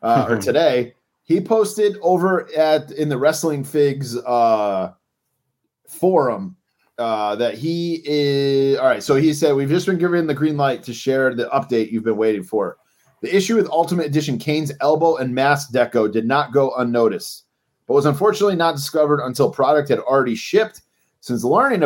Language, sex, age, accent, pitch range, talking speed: English, male, 30-49, American, 125-165 Hz, 175 wpm